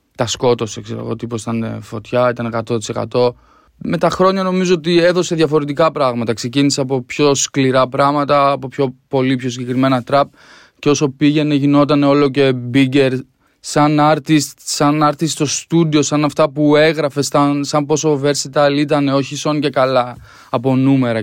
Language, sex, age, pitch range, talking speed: Greek, male, 20-39, 125-145 Hz, 160 wpm